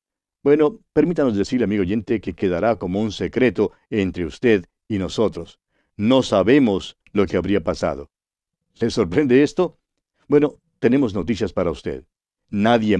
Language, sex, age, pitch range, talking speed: Spanish, male, 60-79, 100-135 Hz, 135 wpm